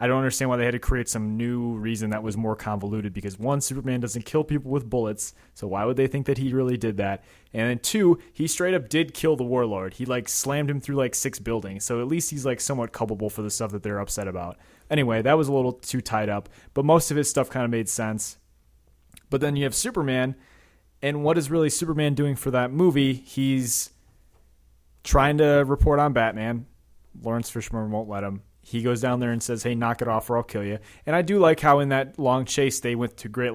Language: English